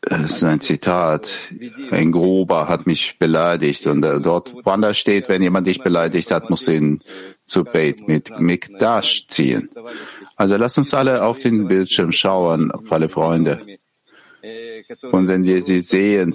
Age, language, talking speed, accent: 50-69, German, 160 wpm, German